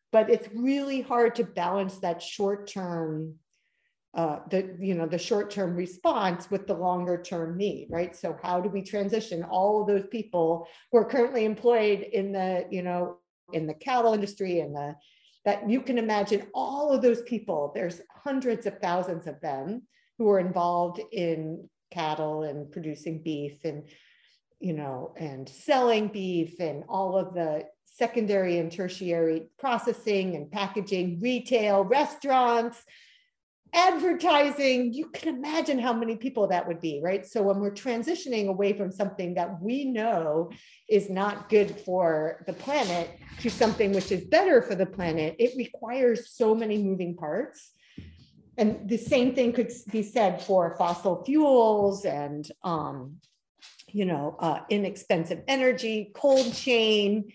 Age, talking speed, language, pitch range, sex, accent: 50-69, 150 wpm, English, 175-235 Hz, female, American